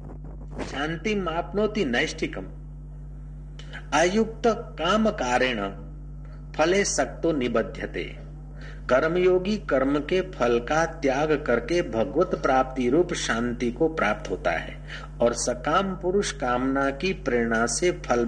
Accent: native